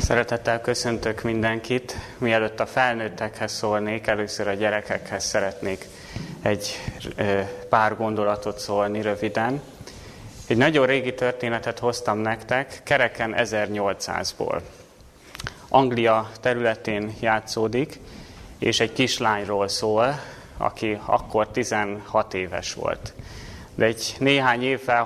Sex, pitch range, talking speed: male, 105-120 Hz, 95 wpm